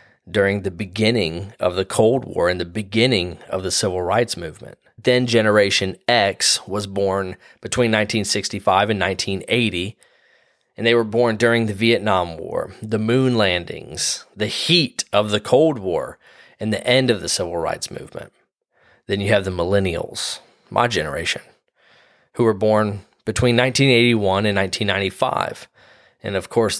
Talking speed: 150 wpm